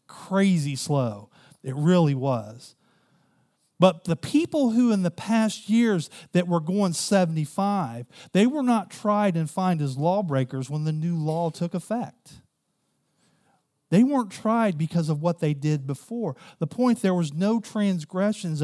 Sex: male